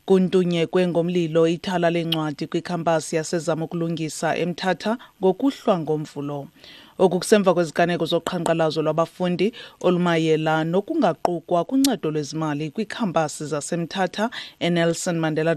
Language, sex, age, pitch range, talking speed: English, female, 30-49, 165-190 Hz, 95 wpm